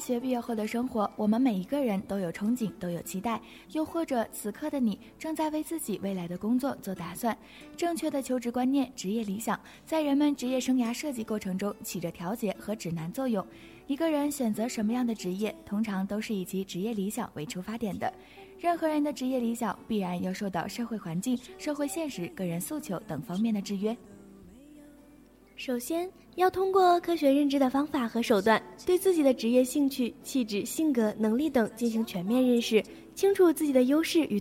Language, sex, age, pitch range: Chinese, female, 20-39, 210-295 Hz